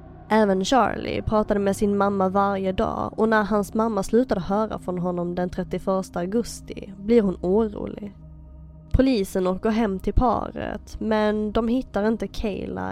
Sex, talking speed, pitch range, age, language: female, 150 wpm, 175-215 Hz, 20-39, Swedish